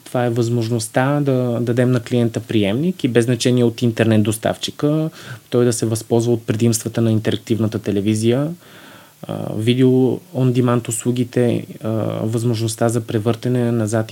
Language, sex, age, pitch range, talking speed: Bulgarian, male, 20-39, 120-140 Hz, 130 wpm